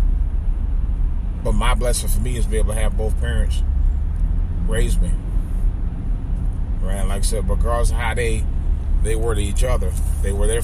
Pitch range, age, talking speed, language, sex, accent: 70-100 Hz, 30-49, 170 wpm, English, male, American